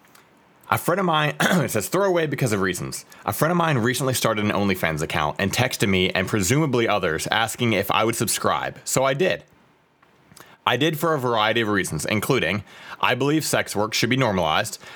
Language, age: English, 30-49